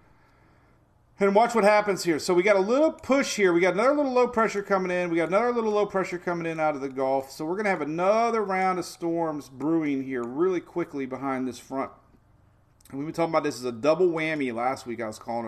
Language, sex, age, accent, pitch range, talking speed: English, male, 40-59, American, 125-170 Hz, 245 wpm